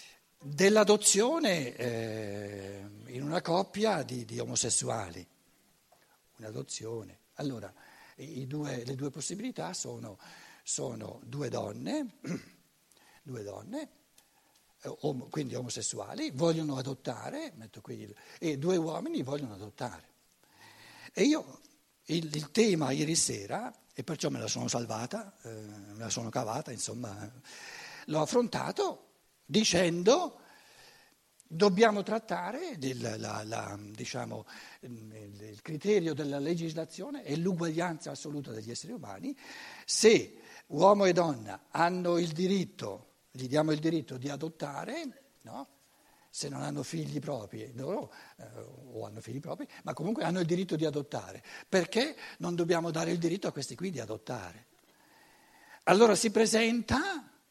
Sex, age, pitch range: male, 60-79, 120-195 Hz